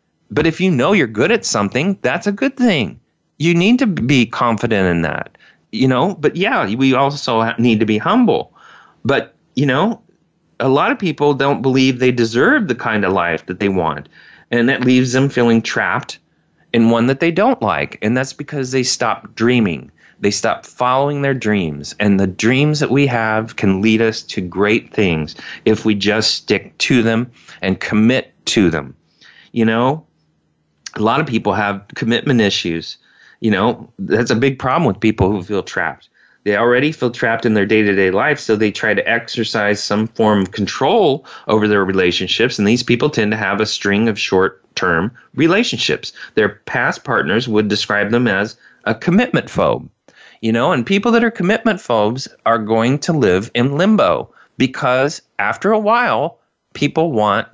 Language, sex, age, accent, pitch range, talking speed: English, male, 30-49, American, 105-140 Hz, 180 wpm